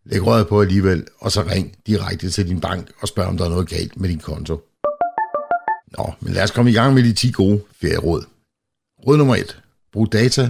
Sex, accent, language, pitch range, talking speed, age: male, native, Danish, 85-105 Hz, 215 wpm, 60-79